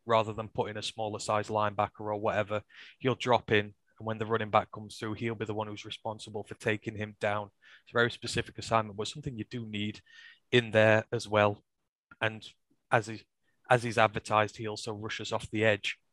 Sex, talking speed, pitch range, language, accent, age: male, 205 wpm, 105-120 Hz, English, British, 20-39